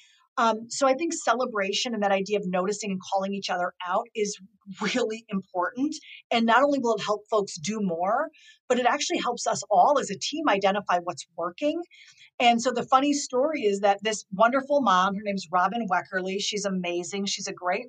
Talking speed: 200 wpm